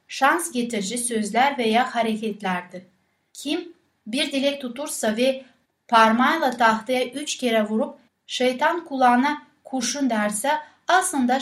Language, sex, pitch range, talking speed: Turkish, female, 215-270 Hz, 105 wpm